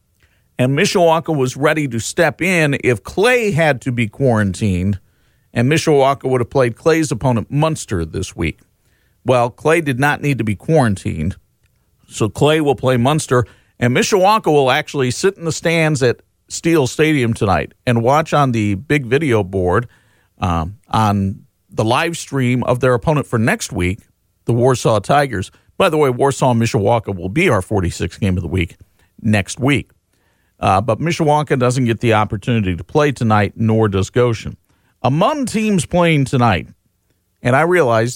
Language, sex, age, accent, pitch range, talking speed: English, male, 50-69, American, 100-145 Hz, 165 wpm